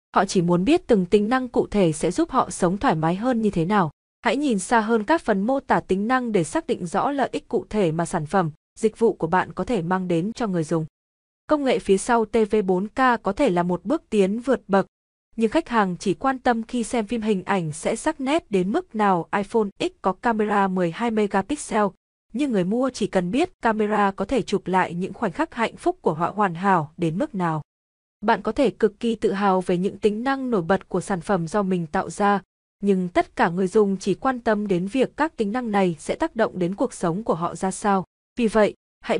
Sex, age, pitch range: female, 20-39, 185-235 Hz